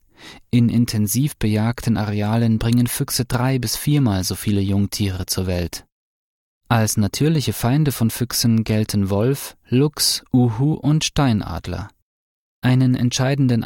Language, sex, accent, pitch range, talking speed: German, male, German, 105-125 Hz, 120 wpm